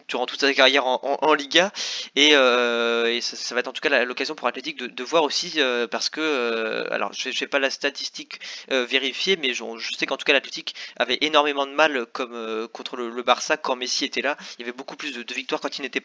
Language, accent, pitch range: French, French, 120-145 Hz